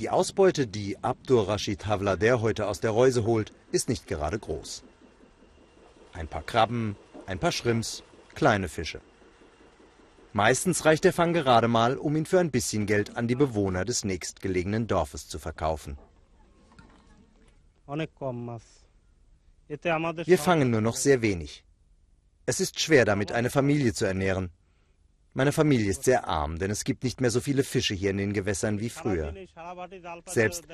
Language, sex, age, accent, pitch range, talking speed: German, male, 40-59, German, 95-135 Hz, 150 wpm